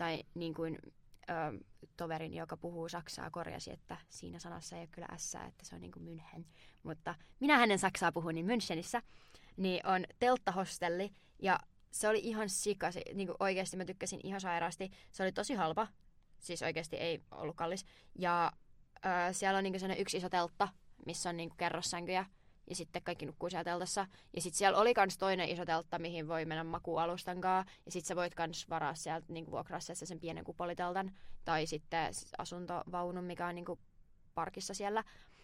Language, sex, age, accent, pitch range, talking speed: Finnish, female, 20-39, native, 165-190 Hz, 175 wpm